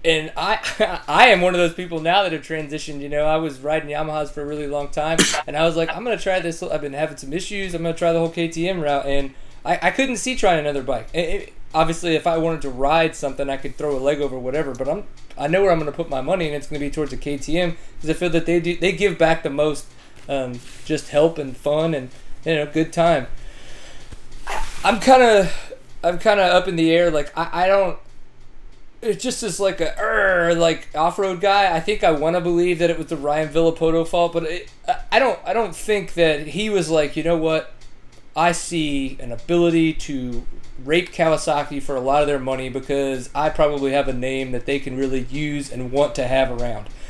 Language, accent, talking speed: English, American, 240 wpm